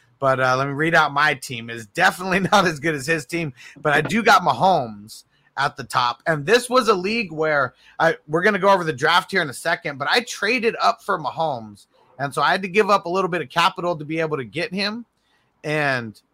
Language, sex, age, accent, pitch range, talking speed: English, male, 30-49, American, 135-175 Hz, 240 wpm